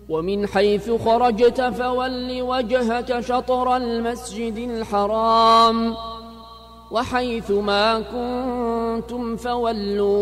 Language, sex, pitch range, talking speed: Arabic, male, 215-245 Hz, 70 wpm